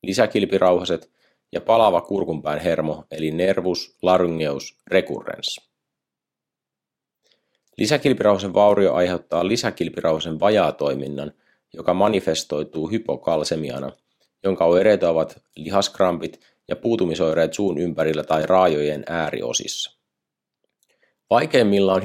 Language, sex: Finnish, male